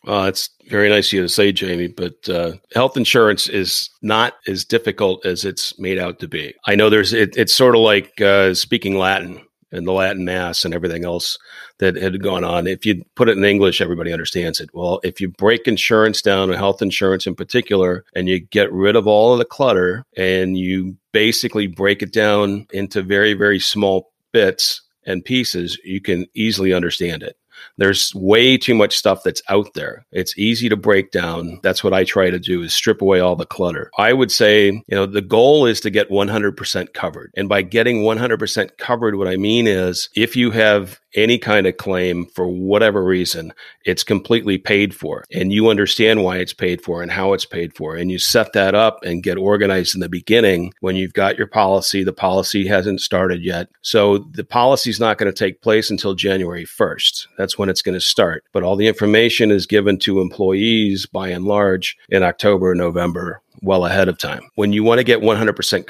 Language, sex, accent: English, male, American